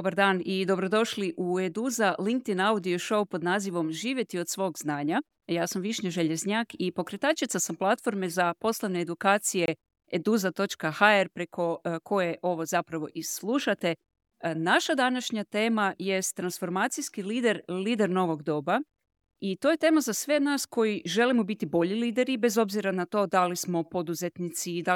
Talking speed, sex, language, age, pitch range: 150 wpm, female, Croatian, 30-49, 175-210 Hz